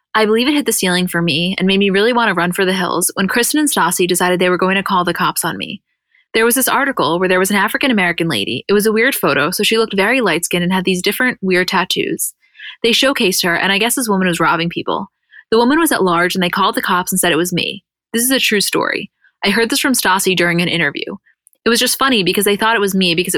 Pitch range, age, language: 180-225 Hz, 20-39, English